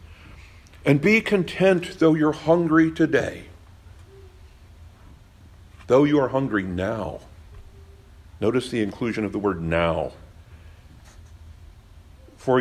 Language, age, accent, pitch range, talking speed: English, 60-79, American, 85-115 Hz, 95 wpm